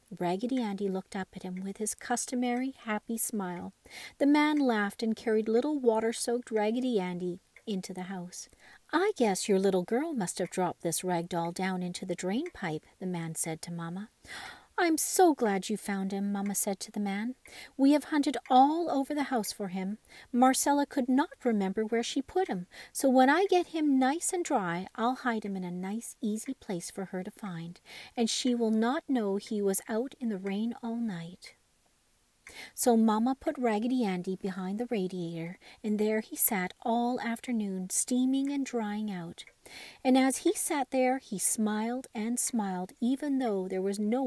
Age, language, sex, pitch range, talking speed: 50-69, English, female, 190-260 Hz, 185 wpm